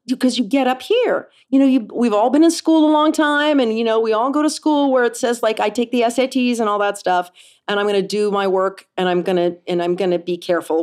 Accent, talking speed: American, 295 wpm